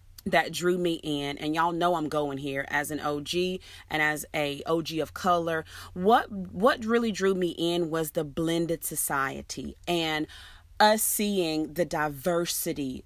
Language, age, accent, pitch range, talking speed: English, 40-59, American, 150-185 Hz, 155 wpm